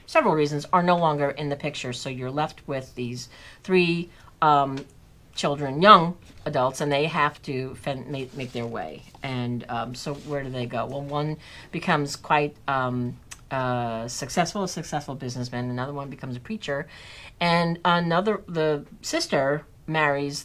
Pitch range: 130-180 Hz